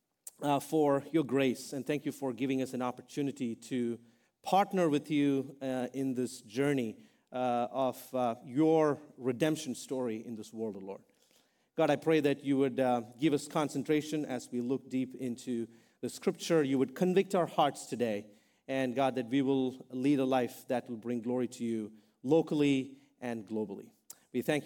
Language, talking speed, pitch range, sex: English, 180 wpm, 125-160 Hz, male